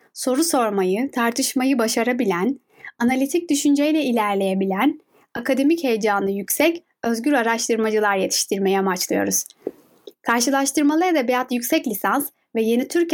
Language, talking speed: Turkish, 95 wpm